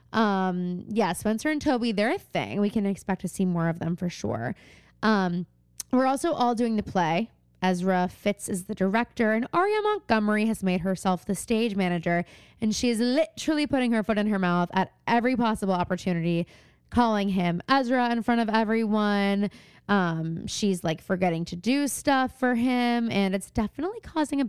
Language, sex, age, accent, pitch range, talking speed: English, female, 20-39, American, 180-235 Hz, 180 wpm